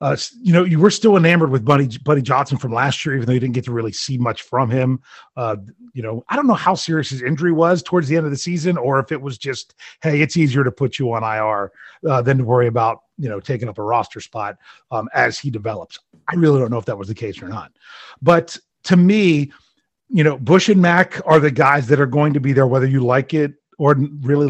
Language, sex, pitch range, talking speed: English, male, 130-170 Hz, 255 wpm